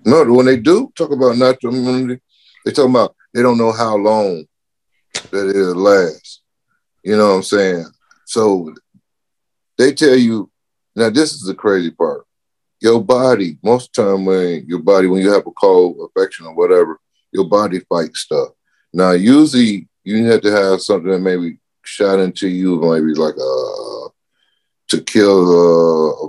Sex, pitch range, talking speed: male, 90-130 Hz, 170 wpm